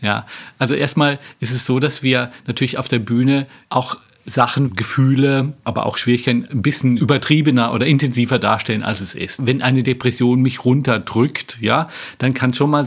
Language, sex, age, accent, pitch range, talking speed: German, male, 40-59, German, 120-145 Hz, 175 wpm